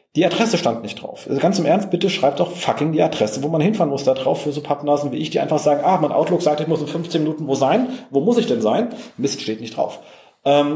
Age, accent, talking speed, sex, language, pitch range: 40-59, German, 280 wpm, male, German, 135-180 Hz